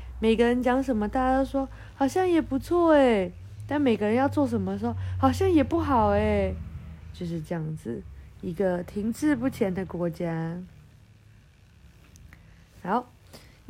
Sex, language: female, Chinese